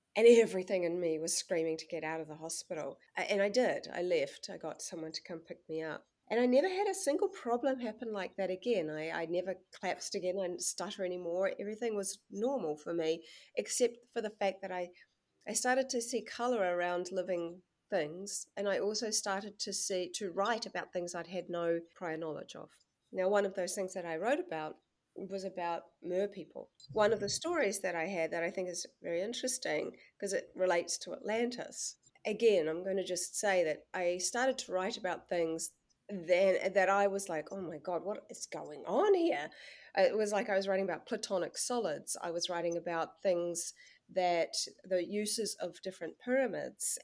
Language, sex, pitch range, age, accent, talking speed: English, female, 170-215 Hz, 30-49, Australian, 200 wpm